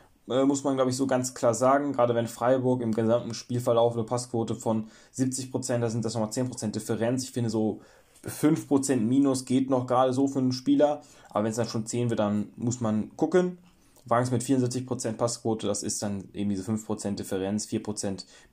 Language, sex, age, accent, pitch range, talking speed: German, male, 20-39, German, 110-130 Hz, 190 wpm